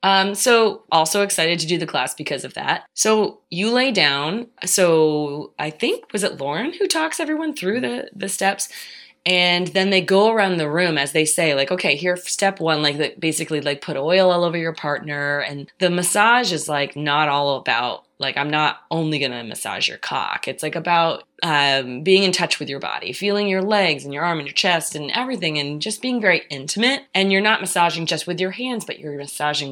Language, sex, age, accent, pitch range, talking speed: English, female, 20-39, American, 145-195 Hz, 215 wpm